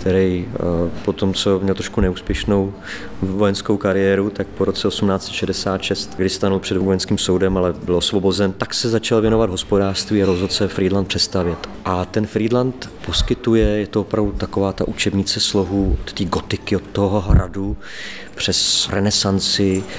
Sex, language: male, Czech